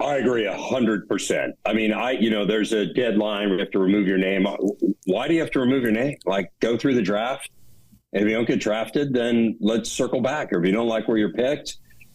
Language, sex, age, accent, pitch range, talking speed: English, male, 50-69, American, 105-125 Hz, 245 wpm